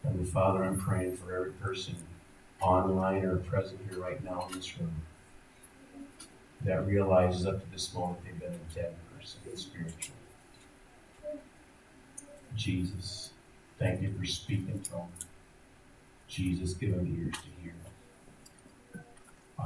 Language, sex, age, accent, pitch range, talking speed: English, male, 40-59, American, 90-110 Hz, 130 wpm